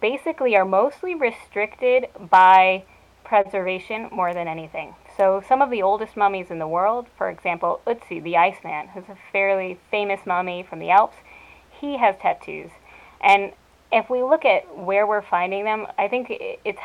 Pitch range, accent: 180-235 Hz, American